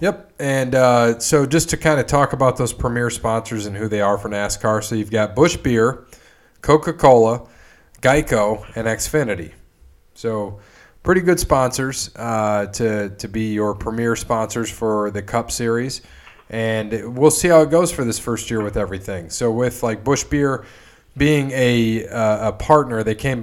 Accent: American